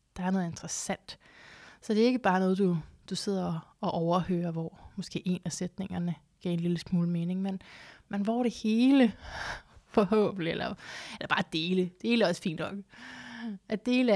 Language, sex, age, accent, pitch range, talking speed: Danish, female, 20-39, native, 180-205 Hz, 180 wpm